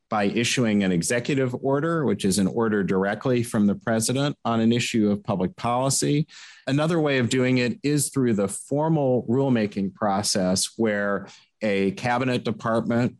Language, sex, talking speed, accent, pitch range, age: English, male, 155 wpm, American, 105-130 Hz, 40-59